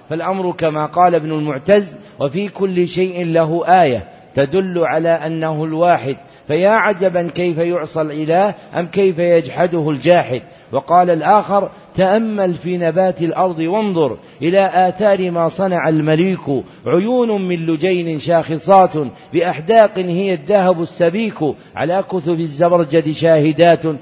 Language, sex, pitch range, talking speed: Arabic, male, 155-185 Hz, 115 wpm